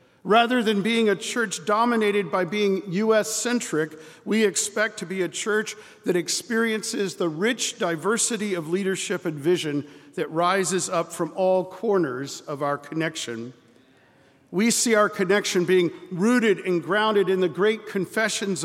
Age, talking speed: 50-69, 145 wpm